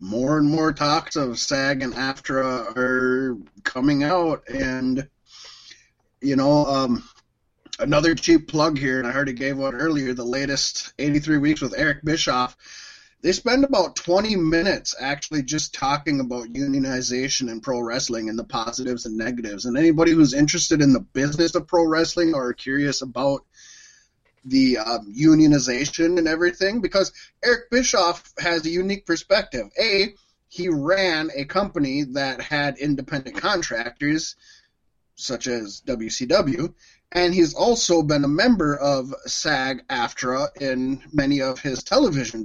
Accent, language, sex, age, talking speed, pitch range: American, English, male, 20-39, 145 wpm, 130-170 Hz